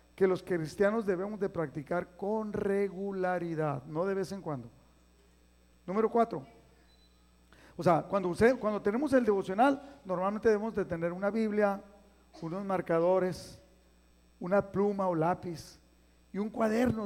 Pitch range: 175-240 Hz